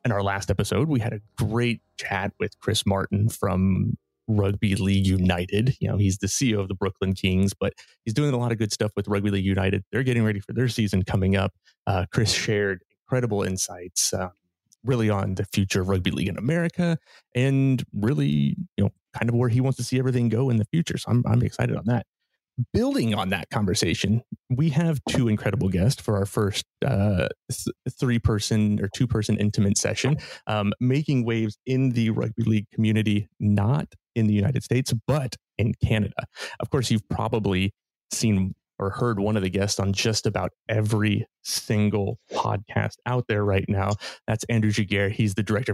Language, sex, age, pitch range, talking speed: English, male, 30-49, 100-120 Hz, 190 wpm